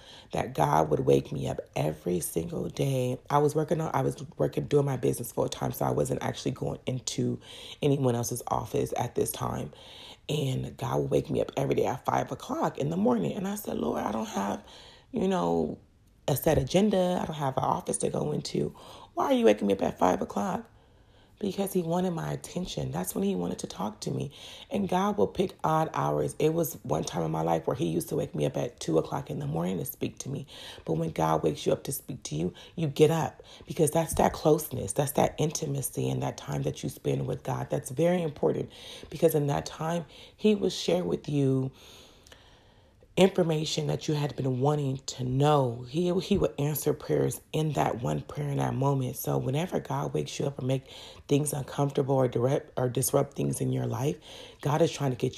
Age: 30-49